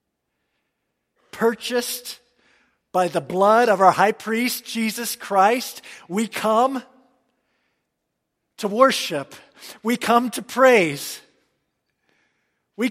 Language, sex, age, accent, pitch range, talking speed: English, male, 50-69, American, 145-230 Hz, 90 wpm